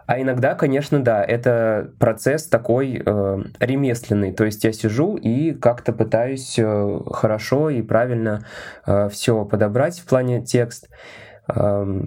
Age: 20-39